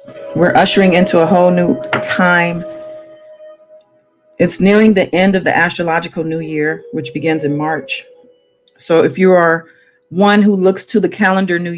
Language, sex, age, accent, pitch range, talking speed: English, female, 40-59, American, 160-230 Hz, 160 wpm